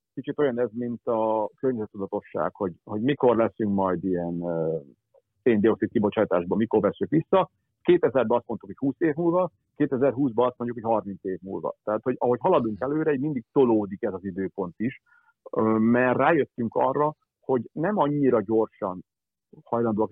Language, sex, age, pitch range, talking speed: Hungarian, male, 50-69, 100-130 Hz, 155 wpm